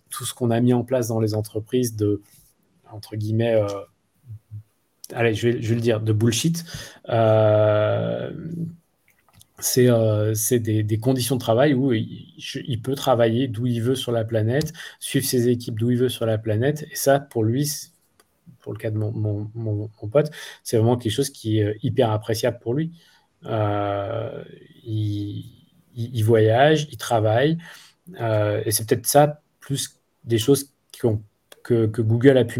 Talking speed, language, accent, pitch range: 180 wpm, French, French, 110-130 Hz